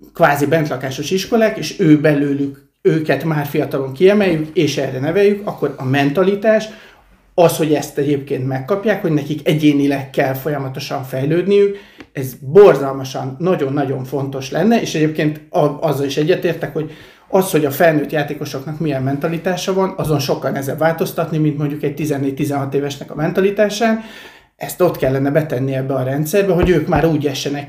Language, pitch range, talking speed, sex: Hungarian, 140-185 Hz, 150 wpm, male